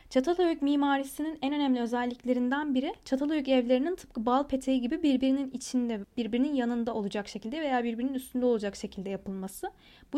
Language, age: Turkish, 10-29